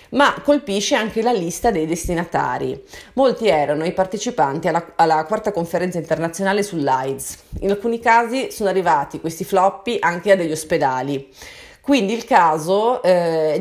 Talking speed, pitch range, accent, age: 140 wpm, 155-215 Hz, native, 30-49